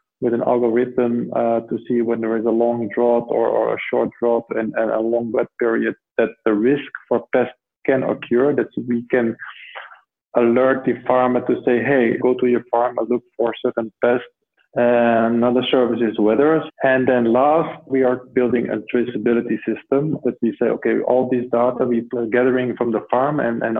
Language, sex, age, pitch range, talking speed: English, male, 20-39, 115-125 Hz, 195 wpm